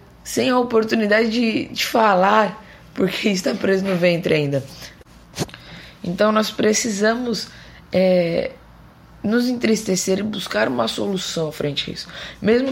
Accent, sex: Brazilian, female